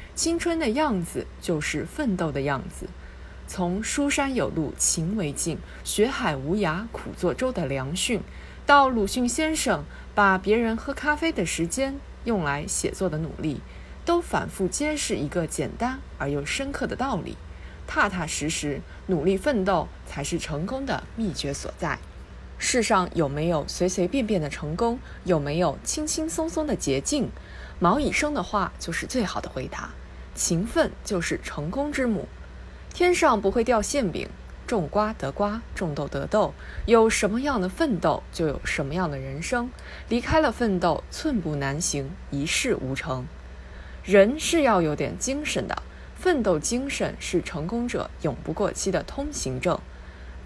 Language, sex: Chinese, female